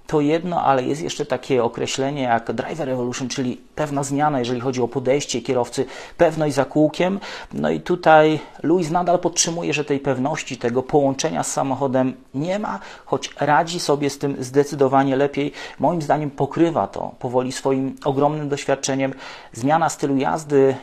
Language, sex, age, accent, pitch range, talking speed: English, male, 40-59, Polish, 125-150 Hz, 155 wpm